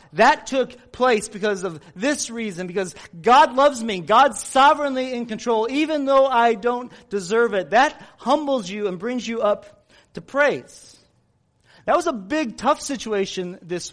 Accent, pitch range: American, 170-240 Hz